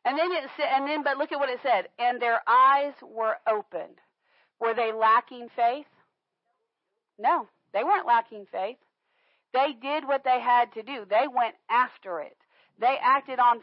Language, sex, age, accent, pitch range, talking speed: English, female, 40-59, American, 235-310 Hz, 170 wpm